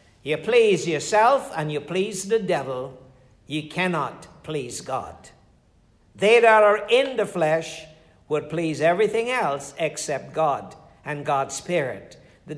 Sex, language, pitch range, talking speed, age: male, English, 155-220 Hz, 135 wpm, 60-79